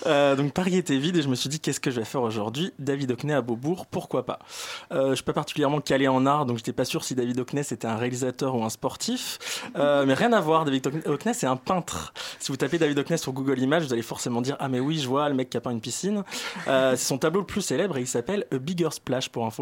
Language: French